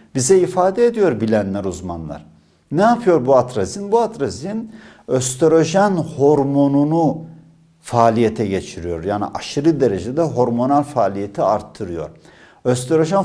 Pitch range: 120-165 Hz